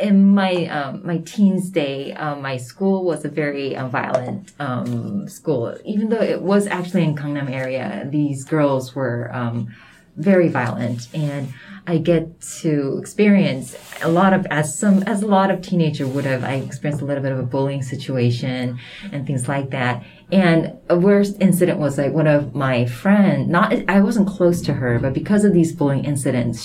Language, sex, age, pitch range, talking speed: French, female, 20-39, 135-180 Hz, 185 wpm